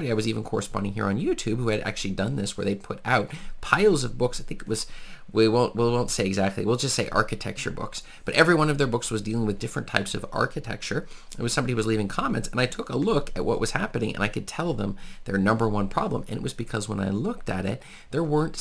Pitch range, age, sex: 105-125 Hz, 30-49, male